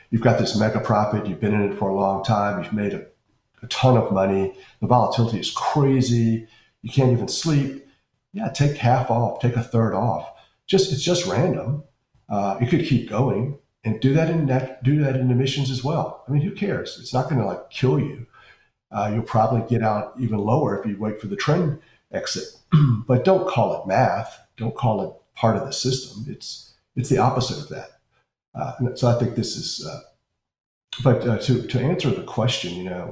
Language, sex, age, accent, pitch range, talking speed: English, male, 50-69, American, 110-135 Hz, 210 wpm